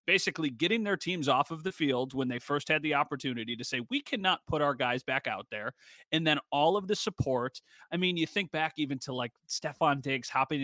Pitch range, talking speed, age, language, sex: 125-155 Hz, 230 wpm, 30-49, English, male